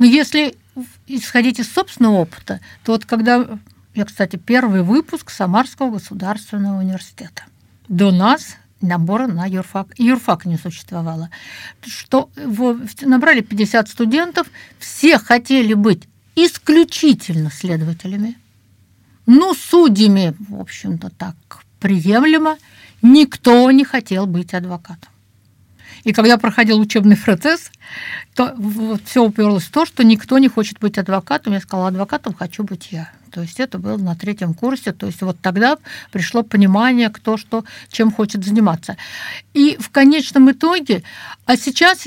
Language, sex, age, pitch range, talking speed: Russian, female, 60-79, 185-260 Hz, 130 wpm